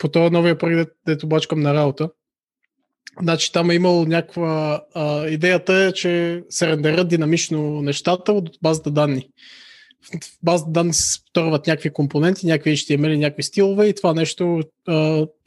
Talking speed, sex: 150 wpm, male